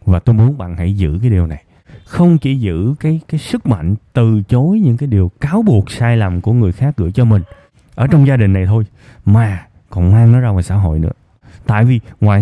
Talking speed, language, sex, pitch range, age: 235 wpm, Vietnamese, male, 95-130 Hz, 20-39